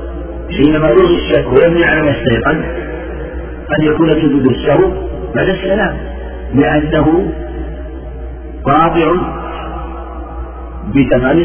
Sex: male